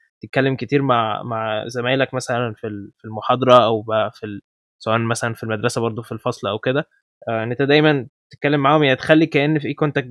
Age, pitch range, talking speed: 20-39, 115-140 Hz, 185 wpm